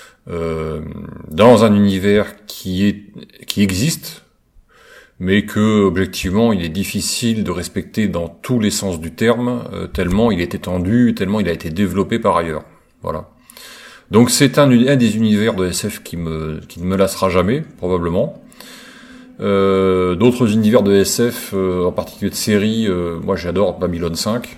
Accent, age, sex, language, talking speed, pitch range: French, 30-49, male, French, 160 wpm, 85-110 Hz